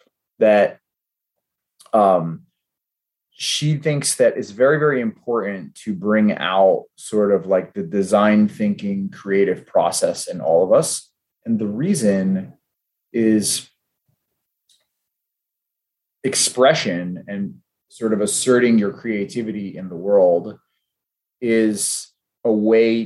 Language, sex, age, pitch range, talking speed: English, male, 30-49, 105-145 Hz, 105 wpm